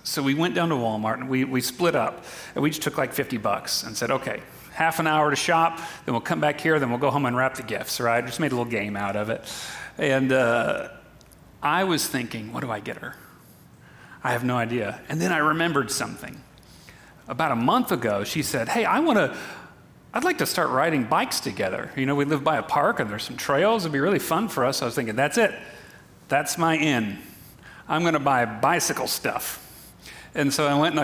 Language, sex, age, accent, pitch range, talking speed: English, male, 40-59, American, 120-150 Hz, 230 wpm